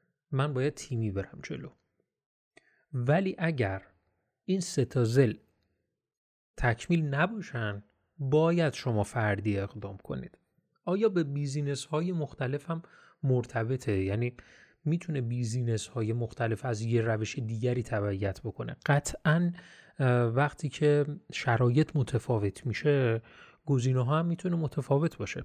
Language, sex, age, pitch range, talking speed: Persian, male, 30-49, 115-150 Hz, 110 wpm